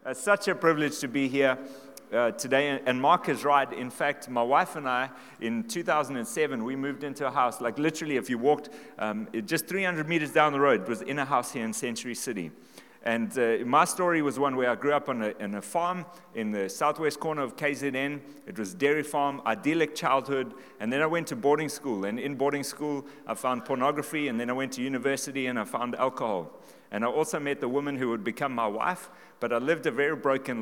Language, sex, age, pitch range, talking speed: English, male, 30-49, 120-155 Hz, 225 wpm